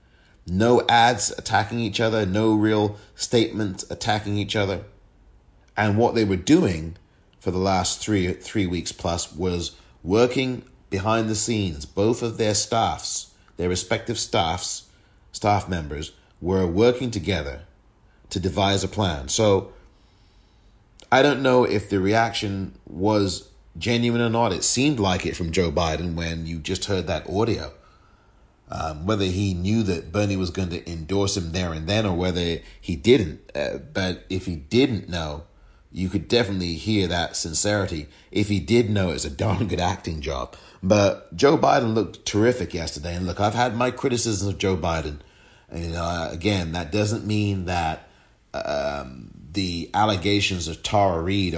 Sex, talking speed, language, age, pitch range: male, 160 wpm, English, 30-49, 85-105 Hz